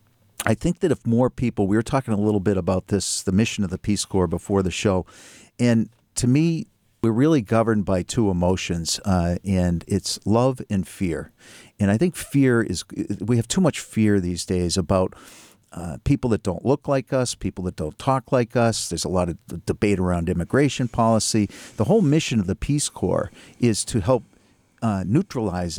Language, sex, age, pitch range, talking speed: English, male, 50-69, 95-125 Hz, 195 wpm